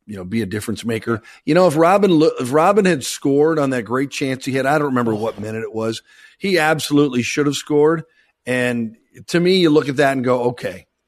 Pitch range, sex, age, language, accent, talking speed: 115-155 Hz, male, 50-69, English, American, 225 wpm